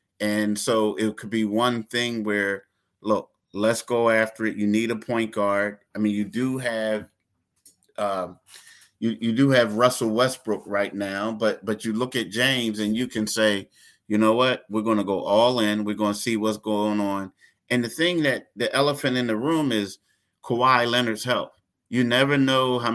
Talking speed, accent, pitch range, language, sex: 195 wpm, American, 105-125 Hz, English, male